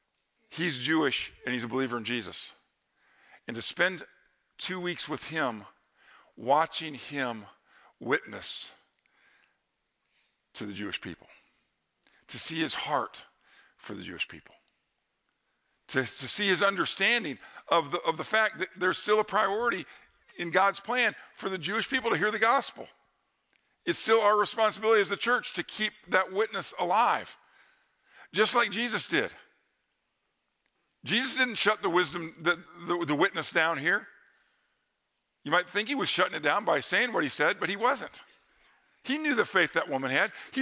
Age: 50-69